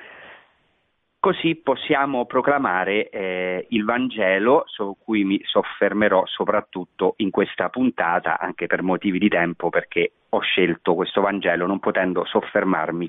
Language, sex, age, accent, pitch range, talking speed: Italian, male, 40-59, native, 90-120 Hz, 125 wpm